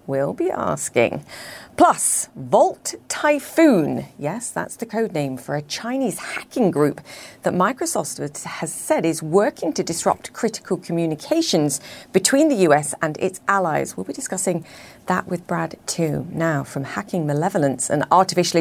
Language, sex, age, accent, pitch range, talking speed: English, female, 40-59, British, 155-215 Hz, 145 wpm